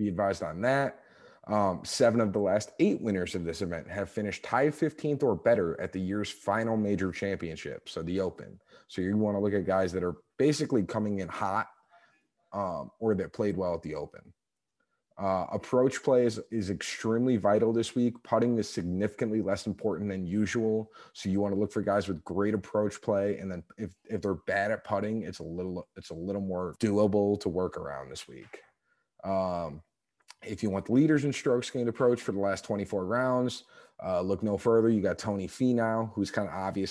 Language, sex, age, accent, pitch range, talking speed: English, male, 30-49, American, 95-110 Hz, 205 wpm